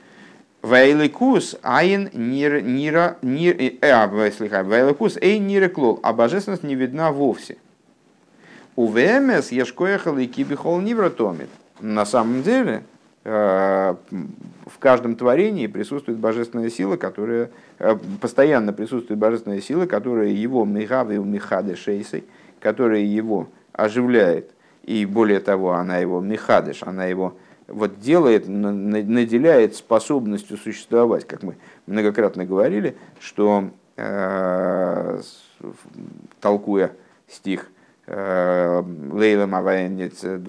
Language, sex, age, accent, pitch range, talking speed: Russian, male, 50-69, native, 100-125 Hz, 85 wpm